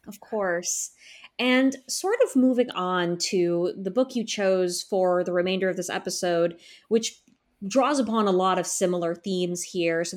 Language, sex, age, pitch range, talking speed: English, female, 20-39, 175-215 Hz, 165 wpm